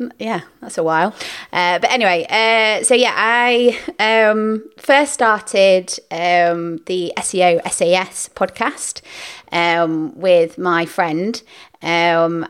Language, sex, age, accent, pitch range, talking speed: English, female, 30-49, British, 165-190 Hz, 115 wpm